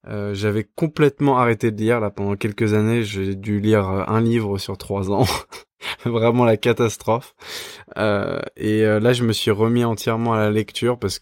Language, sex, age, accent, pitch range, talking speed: French, male, 20-39, French, 100-120 Hz, 185 wpm